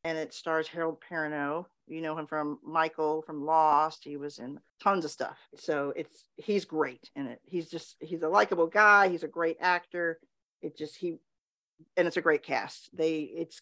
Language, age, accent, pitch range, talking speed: English, 50-69, American, 155-195 Hz, 195 wpm